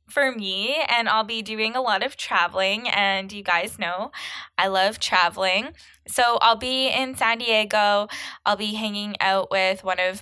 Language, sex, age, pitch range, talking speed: English, female, 10-29, 190-230 Hz, 175 wpm